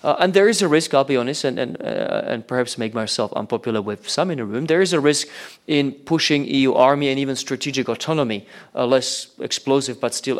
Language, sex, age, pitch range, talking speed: Slovak, male, 30-49, 115-140 Hz, 230 wpm